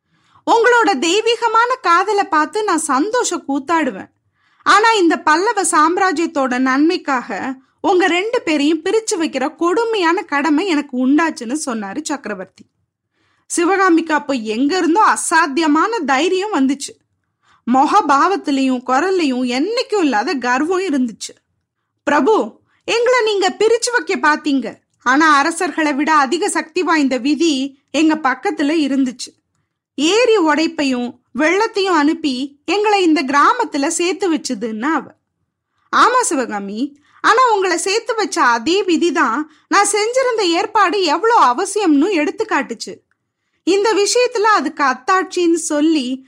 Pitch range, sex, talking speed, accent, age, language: 280-385 Hz, female, 75 wpm, native, 20-39, Tamil